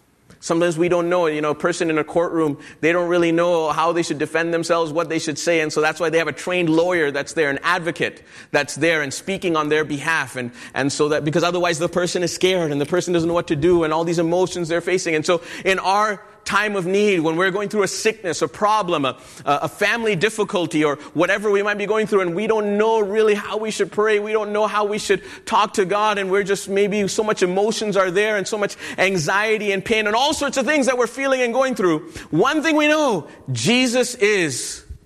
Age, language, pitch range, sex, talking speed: 30-49, English, 145-200 Hz, male, 245 wpm